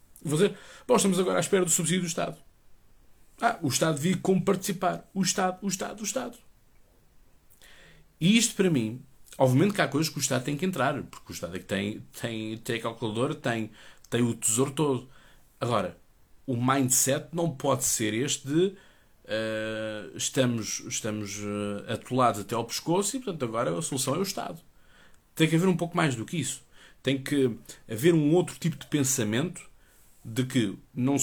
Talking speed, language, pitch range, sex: 175 wpm, Portuguese, 110-165 Hz, male